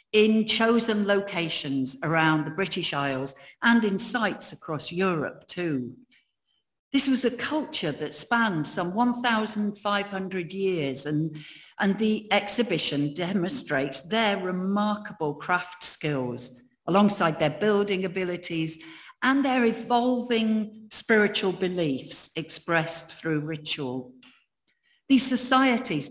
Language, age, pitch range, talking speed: English, 60-79, 150-210 Hz, 105 wpm